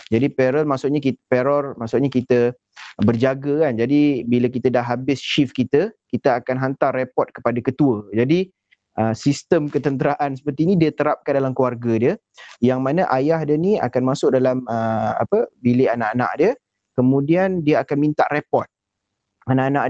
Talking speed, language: 150 wpm, Malay